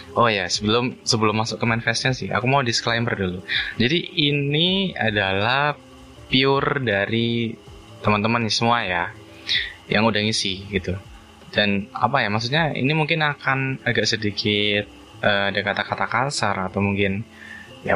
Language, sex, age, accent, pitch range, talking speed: Indonesian, male, 20-39, native, 105-125 Hz, 135 wpm